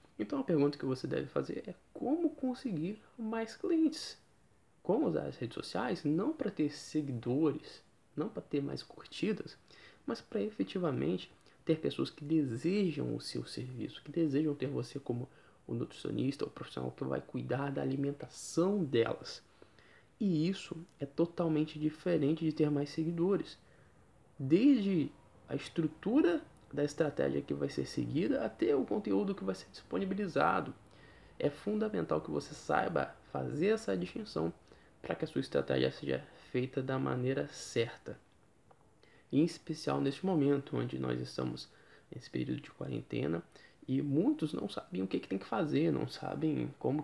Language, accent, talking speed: Portuguese, Brazilian, 150 wpm